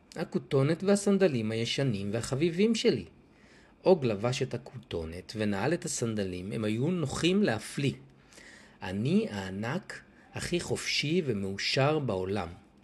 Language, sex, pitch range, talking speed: Hebrew, male, 100-150 Hz, 105 wpm